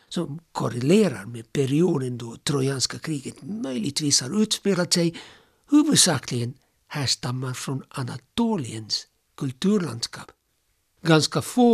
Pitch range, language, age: 130-180 Hz, Swedish, 60-79